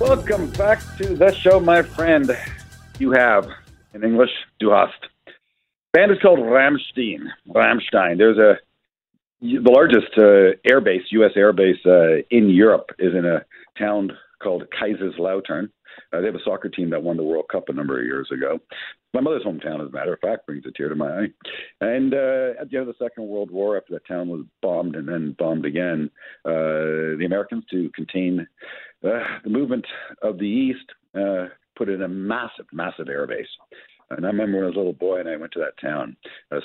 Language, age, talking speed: English, 50-69, 195 wpm